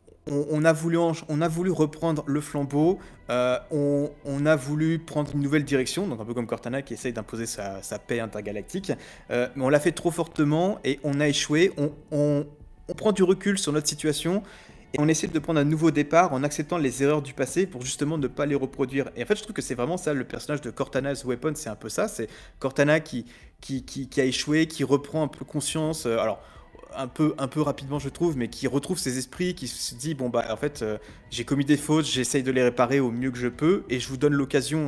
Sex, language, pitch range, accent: male, French, 125-155 Hz, French